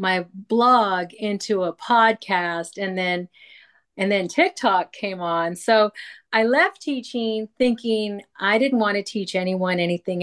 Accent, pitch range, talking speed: American, 180-225 Hz, 140 wpm